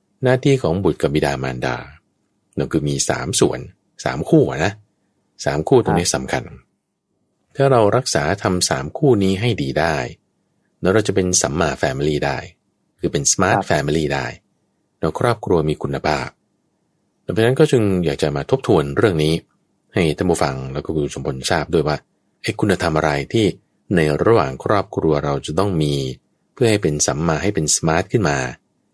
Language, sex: English, male